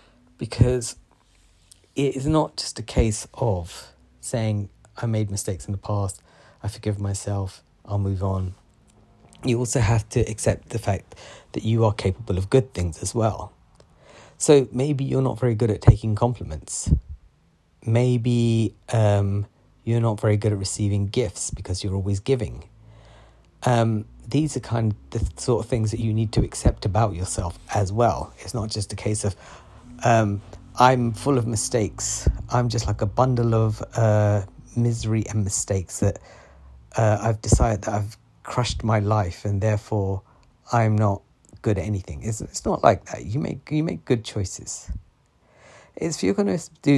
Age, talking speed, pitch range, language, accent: 30-49, 165 wpm, 95-115 Hz, English, British